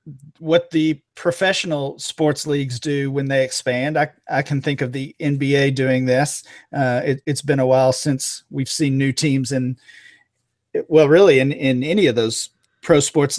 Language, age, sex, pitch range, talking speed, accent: English, 40-59, male, 135-160 Hz, 175 wpm, American